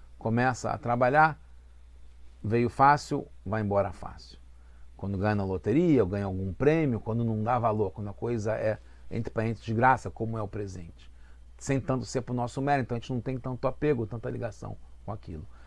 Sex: male